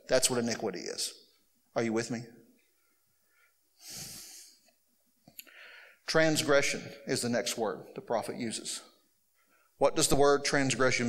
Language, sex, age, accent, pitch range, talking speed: English, male, 50-69, American, 140-230 Hz, 115 wpm